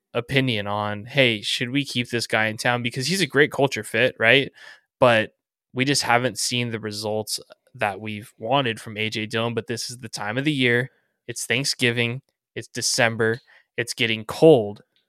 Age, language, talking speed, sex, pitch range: 10-29, English, 180 wpm, male, 110-130 Hz